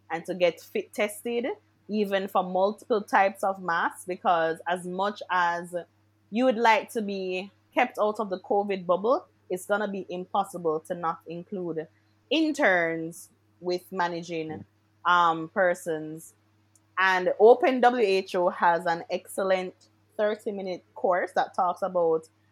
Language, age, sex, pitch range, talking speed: English, 20-39, female, 160-200 Hz, 135 wpm